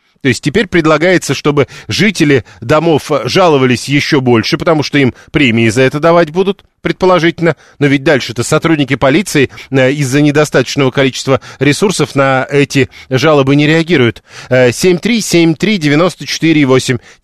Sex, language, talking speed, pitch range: male, Russian, 120 wpm, 130-165 Hz